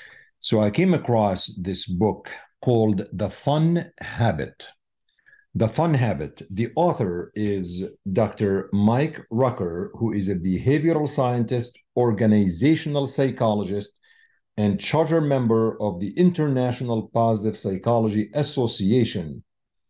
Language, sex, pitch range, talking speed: English, male, 105-135 Hz, 105 wpm